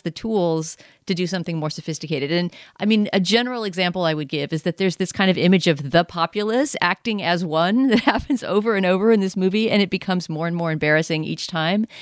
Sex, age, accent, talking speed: female, 40-59, American, 230 wpm